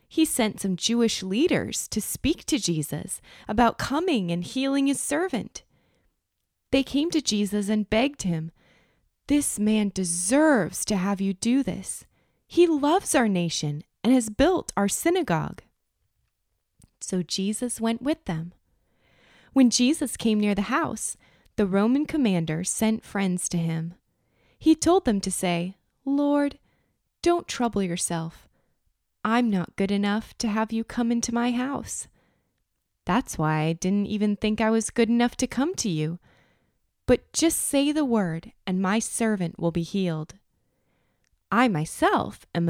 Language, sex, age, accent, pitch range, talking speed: English, female, 20-39, American, 190-260 Hz, 150 wpm